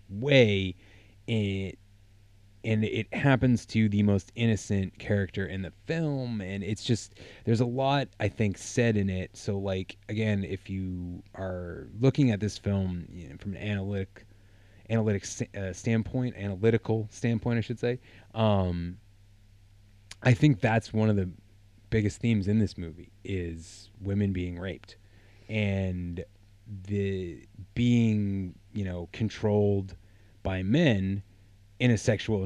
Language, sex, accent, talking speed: English, male, American, 140 wpm